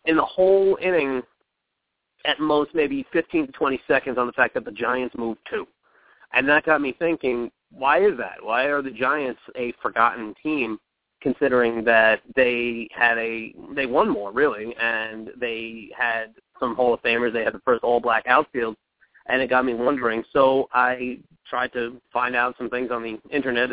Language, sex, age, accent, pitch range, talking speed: English, male, 30-49, American, 115-140 Hz, 180 wpm